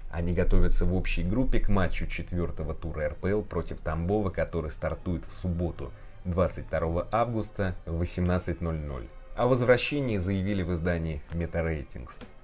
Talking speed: 125 wpm